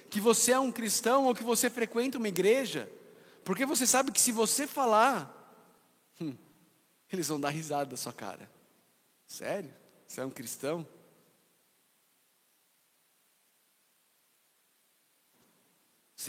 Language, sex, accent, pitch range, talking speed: Portuguese, male, Brazilian, 155-230 Hz, 120 wpm